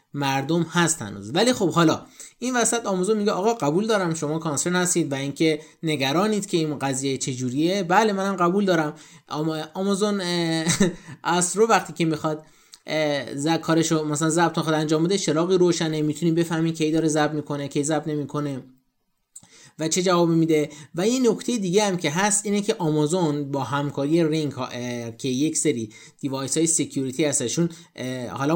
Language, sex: Persian, male